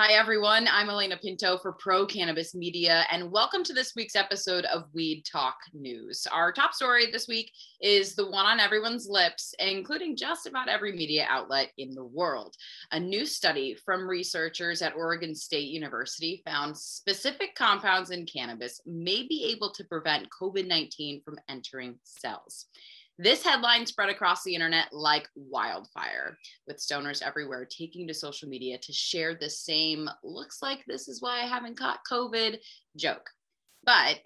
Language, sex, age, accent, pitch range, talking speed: English, female, 20-39, American, 160-225 Hz, 160 wpm